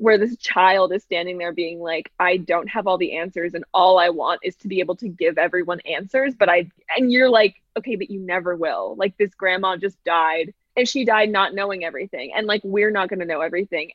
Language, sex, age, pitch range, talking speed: English, female, 20-39, 180-220 Hz, 235 wpm